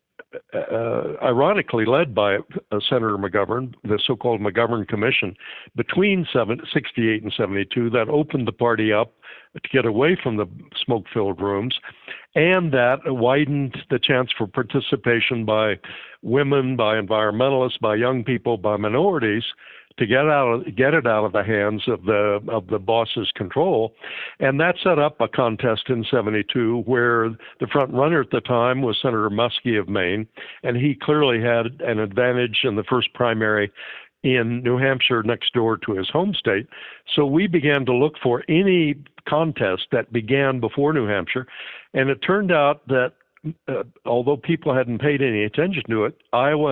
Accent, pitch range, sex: American, 115-135 Hz, male